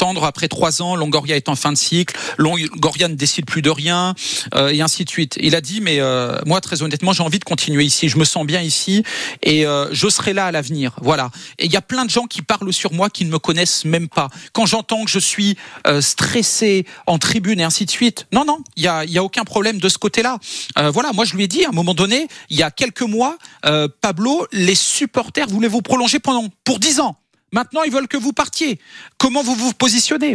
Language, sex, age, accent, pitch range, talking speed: French, male, 40-59, French, 160-230 Hz, 245 wpm